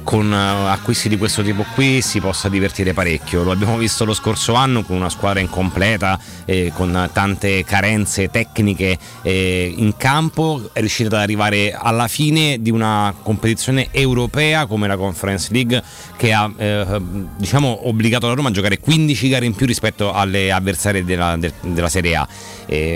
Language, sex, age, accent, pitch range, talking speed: Italian, male, 30-49, native, 90-115 Hz, 165 wpm